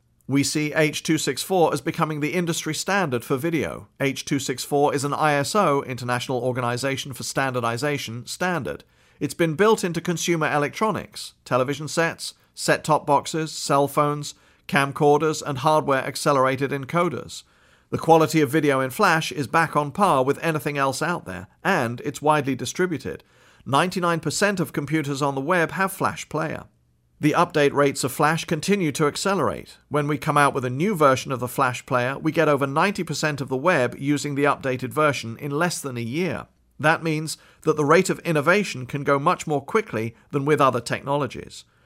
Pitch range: 135-165 Hz